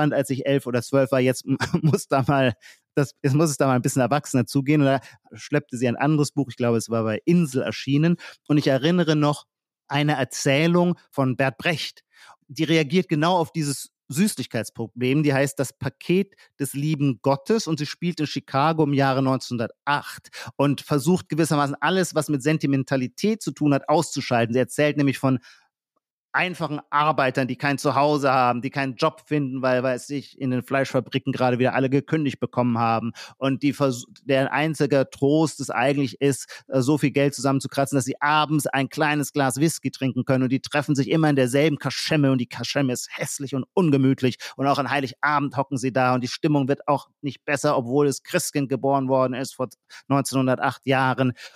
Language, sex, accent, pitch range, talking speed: German, male, German, 130-150 Hz, 180 wpm